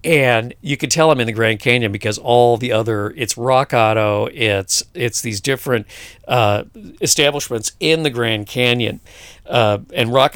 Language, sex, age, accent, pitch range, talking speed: English, male, 50-69, American, 105-135 Hz, 170 wpm